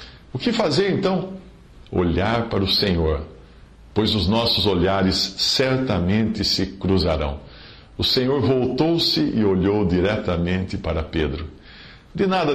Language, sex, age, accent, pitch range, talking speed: English, male, 50-69, Brazilian, 85-115 Hz, 120 wpm